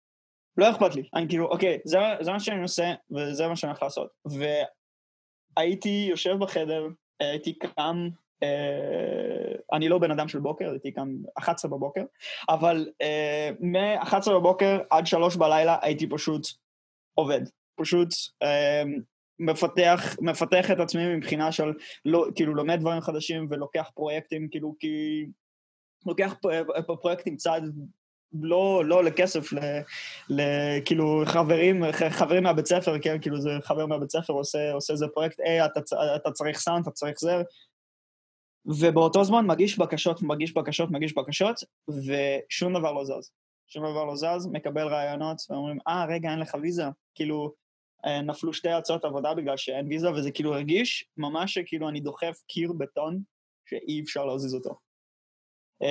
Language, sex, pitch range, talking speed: Hebrew, male, 150-175 Hz, 145 wpm